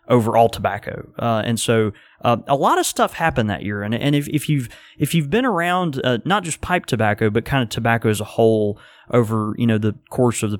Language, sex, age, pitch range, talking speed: English, male, 20-39, 110-130 Hz, 230 wpm